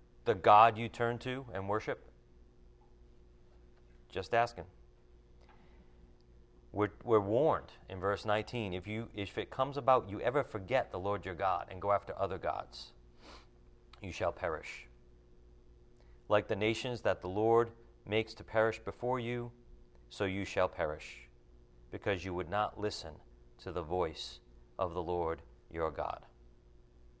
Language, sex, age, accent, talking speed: English, male, 40-59, American, 140 wpm